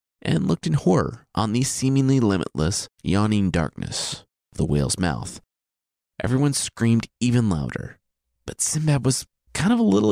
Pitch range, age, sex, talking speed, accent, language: 85-135 Hz, 30-49, male, 150 wpm, American, English